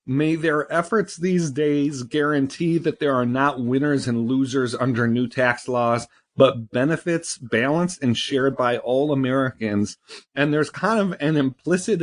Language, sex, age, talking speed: English, male, 40-59, 155 wpm